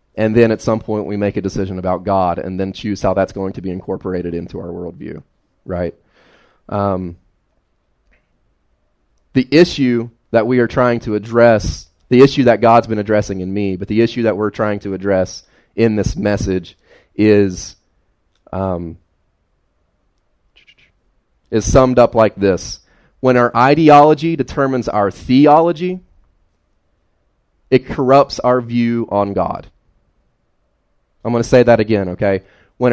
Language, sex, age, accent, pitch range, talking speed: English, male, 30-49, American, 90-120 Hz, 145 wpm